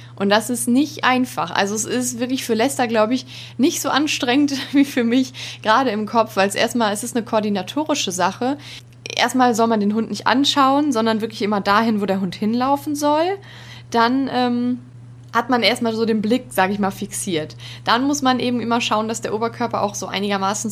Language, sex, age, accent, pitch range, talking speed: German, female, 20-39, German, 200-255 Hz, 205 wpm